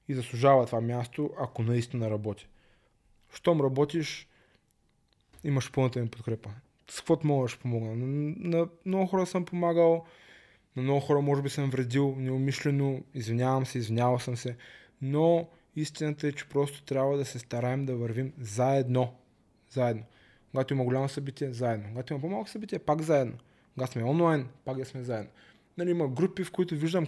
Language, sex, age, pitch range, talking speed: Bulgarian, male, 20-39, 125-165 Hz, 160 wpm